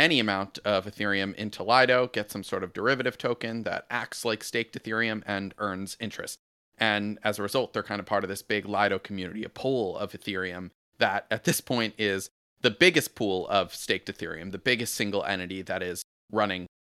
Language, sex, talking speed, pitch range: English, male, 195 wpm, 100-120 Hz